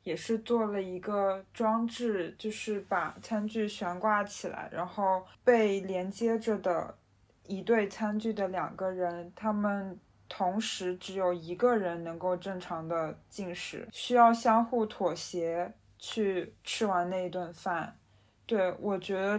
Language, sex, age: Chinese, female, 20-39